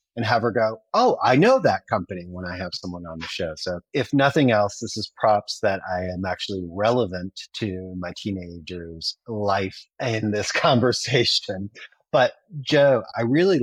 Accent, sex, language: American, male, English